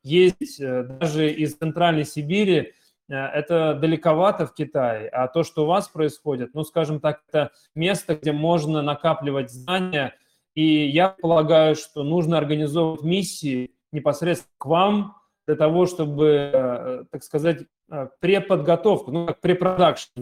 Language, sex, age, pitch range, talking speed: Russian, male, 20-39, 145-175 Hz, 130 wpm